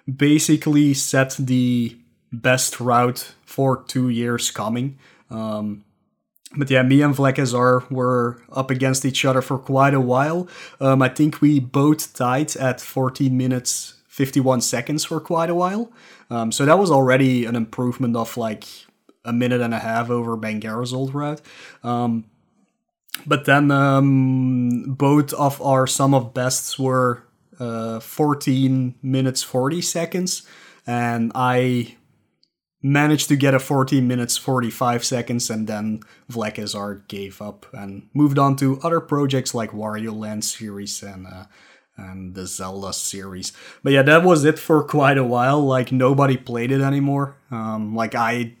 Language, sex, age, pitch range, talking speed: English, male, 20-39, 115-140 Hz, 150 wpm